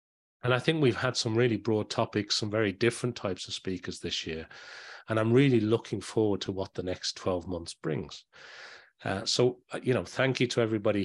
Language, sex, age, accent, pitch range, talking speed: English, male, 30-49, British, 95-115 Hz, 200 wpm